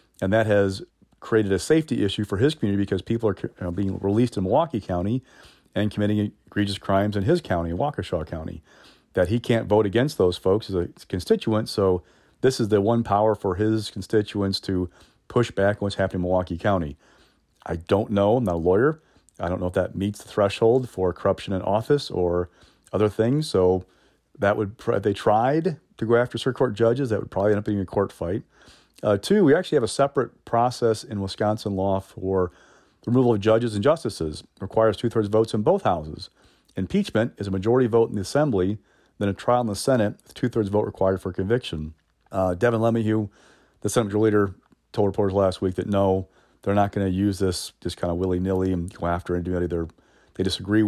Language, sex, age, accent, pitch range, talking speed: English, male, 40-59, American, 95-110 Hz, 205 wpm